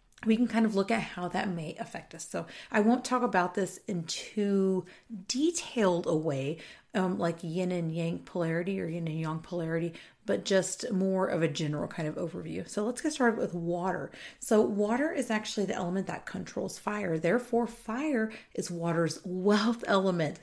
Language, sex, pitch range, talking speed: English, female, 180-230 Hz, 185 wpm